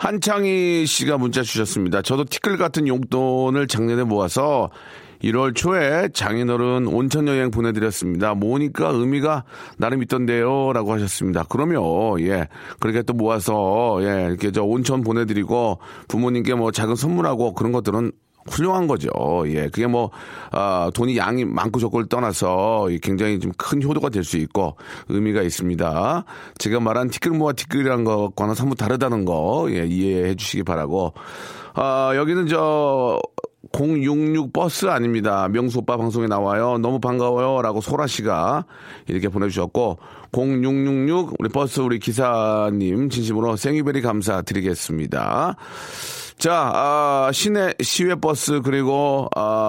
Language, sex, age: Korean, male, 40-59